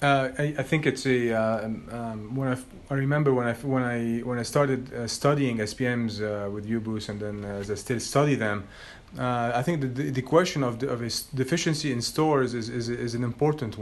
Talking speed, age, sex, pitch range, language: 230 wpm, 30-49, male, 110-135 Hz, English